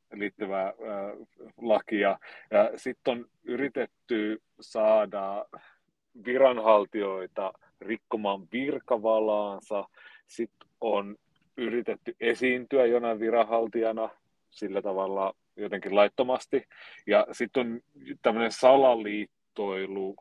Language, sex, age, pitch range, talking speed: Finnish, male, 30-49, 100-120 Hz, 75 wpm